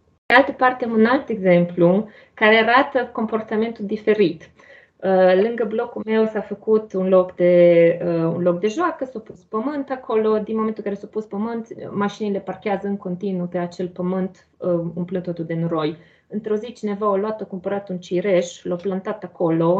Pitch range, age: 180-240 Hz, 30-49